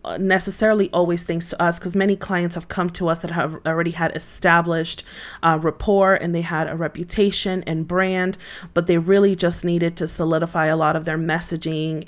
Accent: American